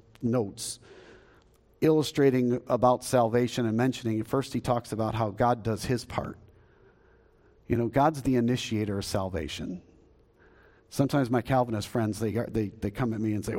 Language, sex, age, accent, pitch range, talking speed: English, male, 50-69, American, 125-165 Hz, 150 wpm